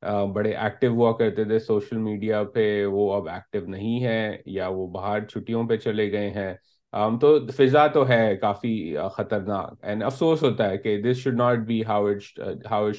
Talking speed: 170 wpm